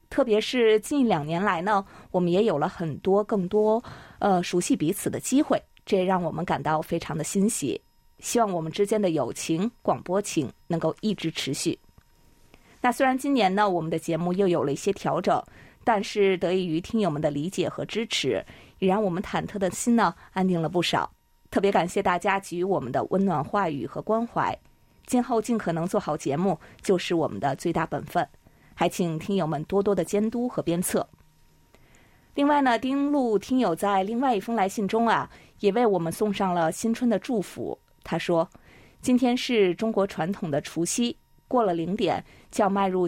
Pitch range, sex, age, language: 170-225 Hz, female, 20-39, Chinese